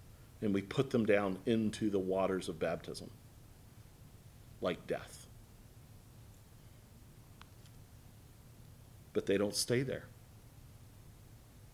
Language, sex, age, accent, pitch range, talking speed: English, male, 50-69, American, 115-160 Hz, 85 wpm